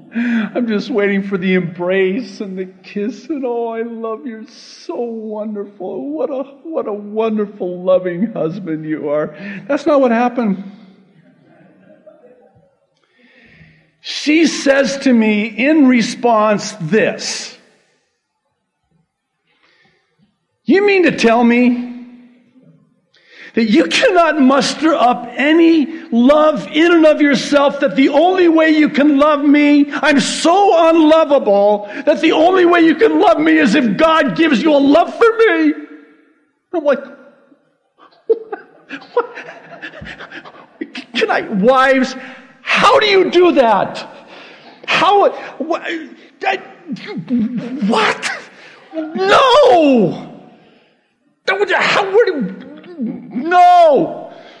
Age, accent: 50-69, American